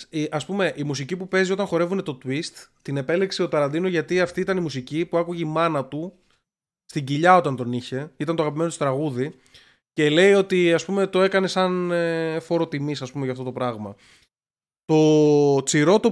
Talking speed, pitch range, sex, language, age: 190 wpm, 140-180 Hz, male, Greek, 20-39